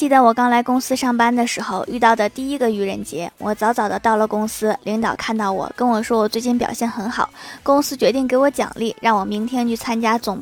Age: 20-39